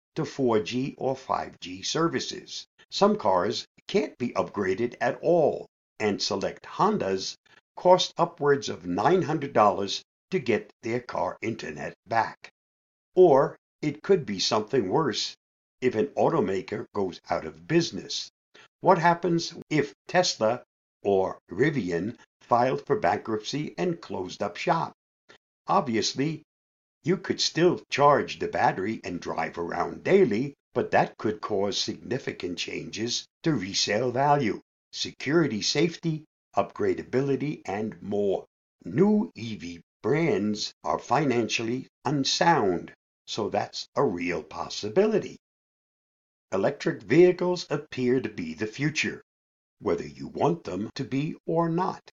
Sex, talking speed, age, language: male, 115 wpm, 60-79, English